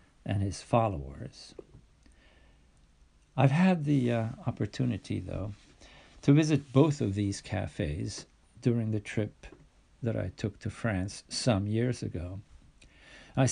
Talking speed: 120 wpm